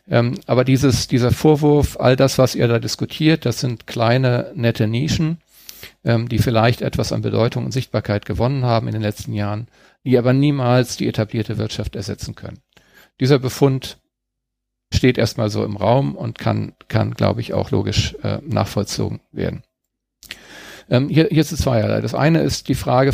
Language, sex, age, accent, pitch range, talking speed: German, male, 40-59, German, 110-135 Hz, 155 wpm